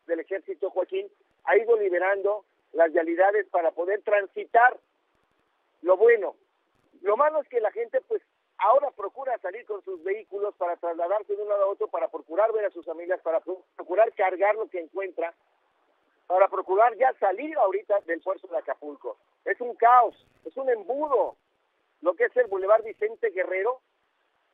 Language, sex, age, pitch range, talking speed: Spanish, male, 50-69, 180-295 Hz, 165 wpm